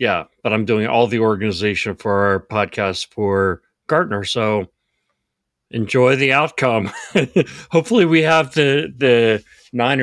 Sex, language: male, English